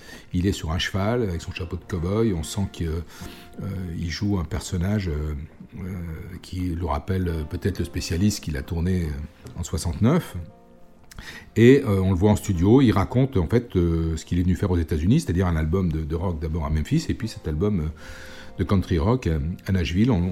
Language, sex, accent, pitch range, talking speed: French, male, French, 85-105 Hz, 180 wpm